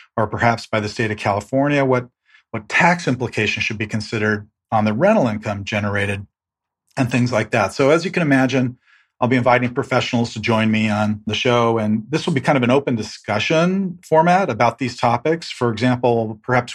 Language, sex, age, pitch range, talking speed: English, male, 40-59, 110-130 Hz, 195 wpm